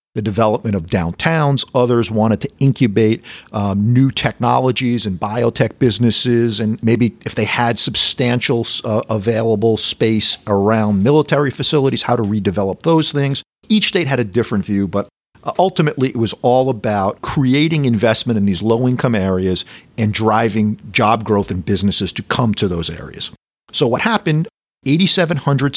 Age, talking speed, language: 50-69, 150 wpm, English